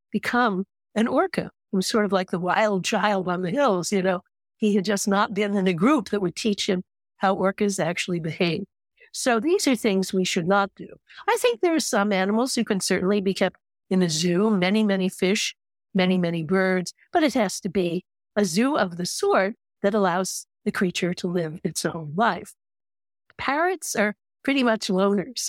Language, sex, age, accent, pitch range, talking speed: English, female, 50-69, American, 180-215 Hz, 200 wpm